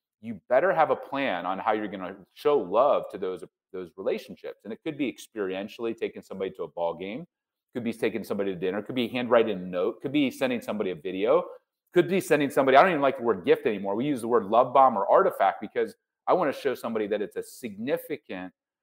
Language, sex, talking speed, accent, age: English, male, 250 wpm, American, 30-49